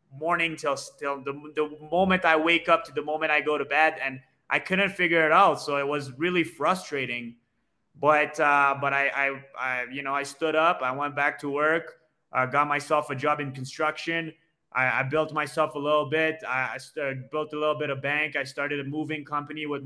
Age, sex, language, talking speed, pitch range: 20-39, male, English, 220 wpm, 135-155 Hz